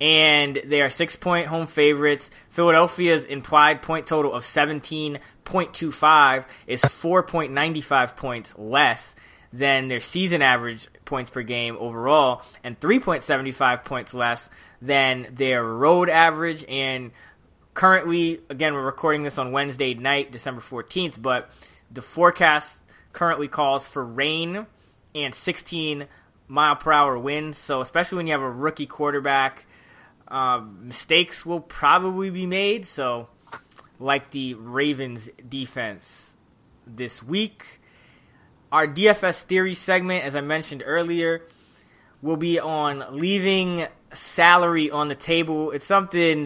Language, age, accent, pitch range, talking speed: English, 20-39, American, 135-165 Hz, 120 wpm